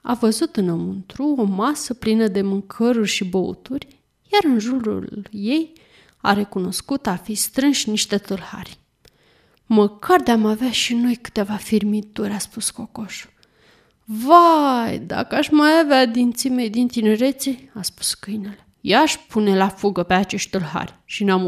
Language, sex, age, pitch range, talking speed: Romanian, female, 20-39, 195-255 Hz, 140 wpm